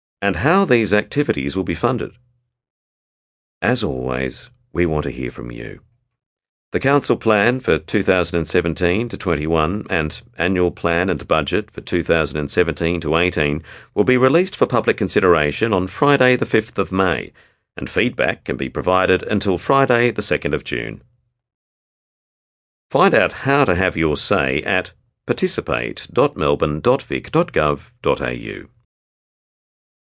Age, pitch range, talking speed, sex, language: 50-69, 75-120 Hz, 125 wpm, male, English